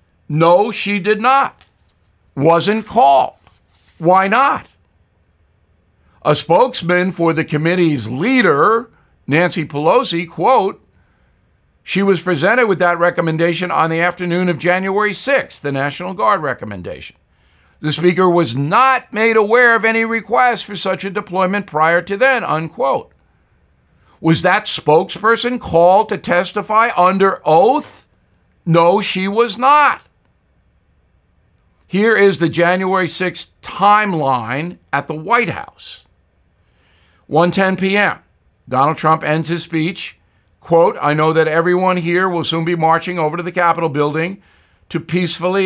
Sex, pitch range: male, 150-195 Hz